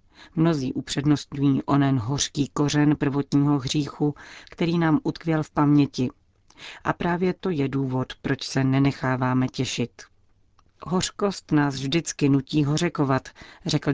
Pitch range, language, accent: 135-155 Hz, Czech, native